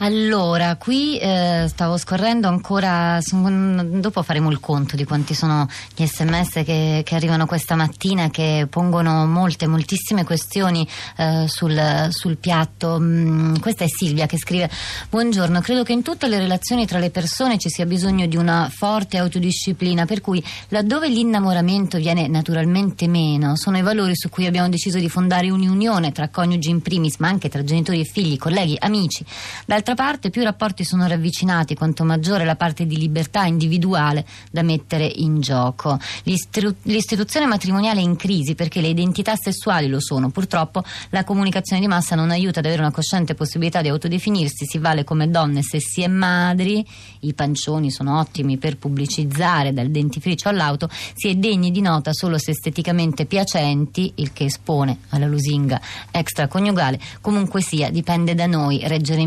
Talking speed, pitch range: 165 wpm, 155-185 Hz